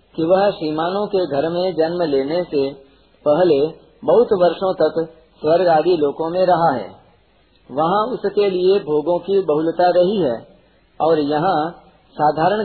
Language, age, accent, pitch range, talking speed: Hindi, 50-69, native, 150-195 Hz, 140 wpm